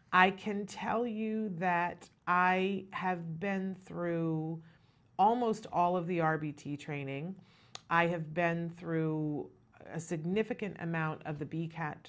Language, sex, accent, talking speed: English, female, American, 125 wpm